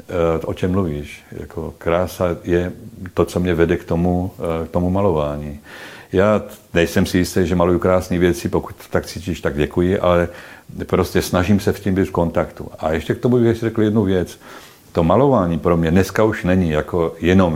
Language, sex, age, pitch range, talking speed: Czech, male, 60-79, 75-95 Hz, 185 wpm